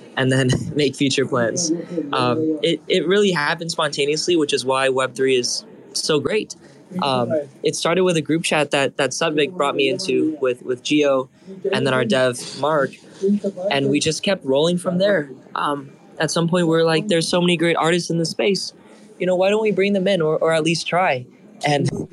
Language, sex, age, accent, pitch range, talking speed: English, male, 20-39, American, 150-190 Hz, 205 wpm